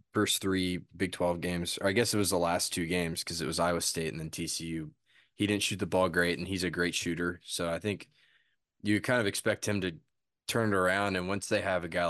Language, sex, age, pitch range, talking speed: English, male, 20-39, 85-105 Hz, 255 wpm